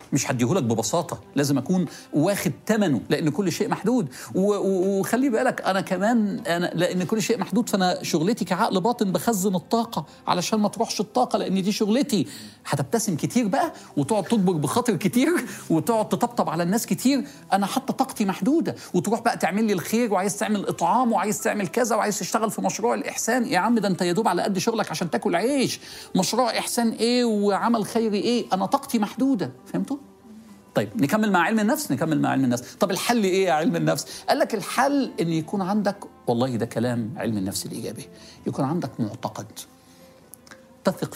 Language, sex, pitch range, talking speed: Arabic, male, 160-225 Hz, 170 wpm